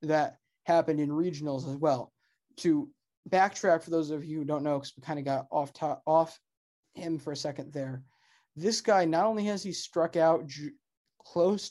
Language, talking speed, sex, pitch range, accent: English, 195 wpm, male, 145-175 Hz, American